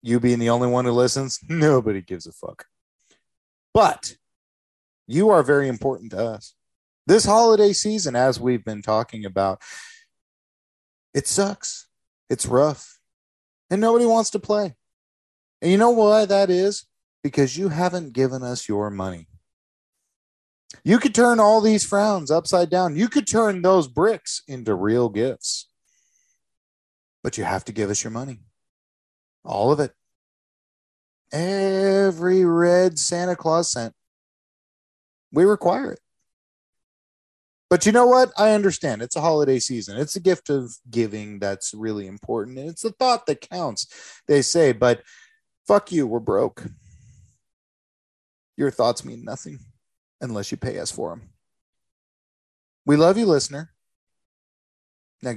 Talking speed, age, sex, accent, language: 140 wpm, 30-49, male, American, English